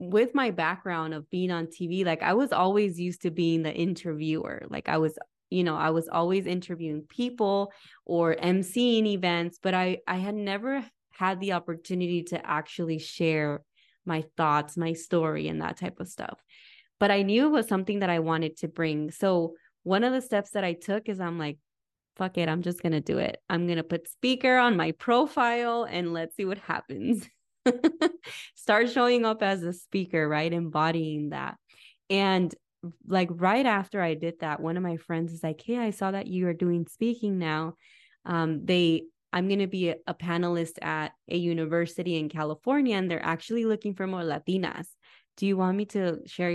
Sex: female